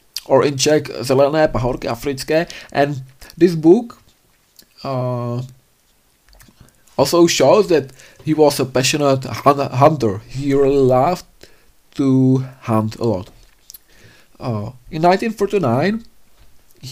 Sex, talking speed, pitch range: male, 100 wpm, 125-160 Hz